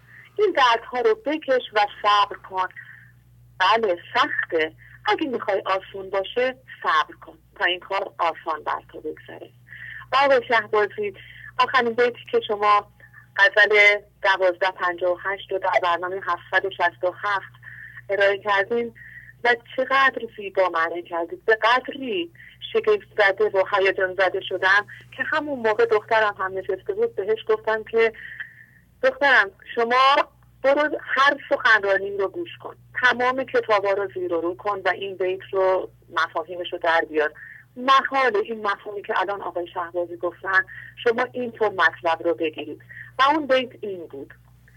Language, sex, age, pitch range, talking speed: English, female, 30-49, 180-255 Hz, 145 wpm